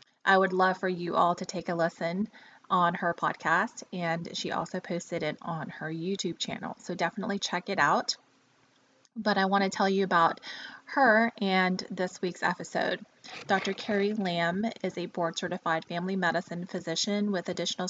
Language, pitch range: English, 175-205 Hz